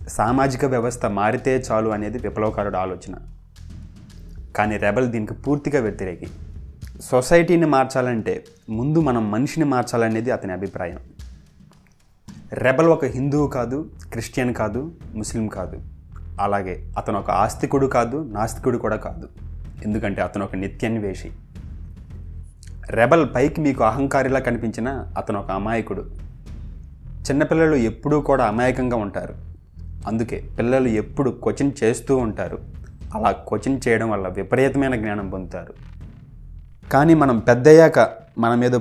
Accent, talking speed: native, 115 wpm